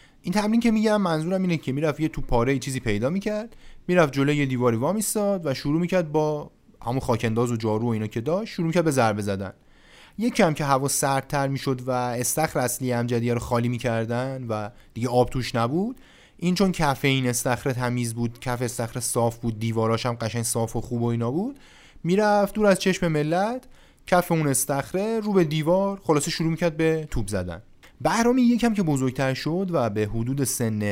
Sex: male